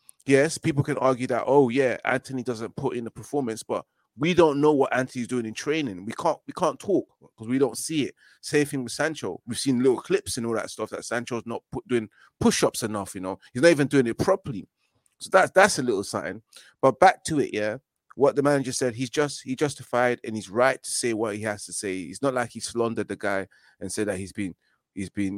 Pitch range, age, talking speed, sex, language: 95-130 Hz, 30-49, 240 wpm, male, English